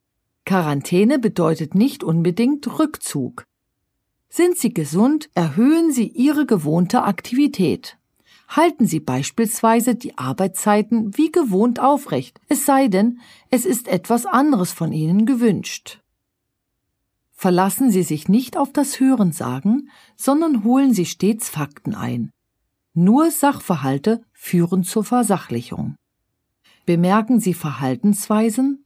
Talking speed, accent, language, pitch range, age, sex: 110 wpm, German, German, 165-245 Hz, 40-59, female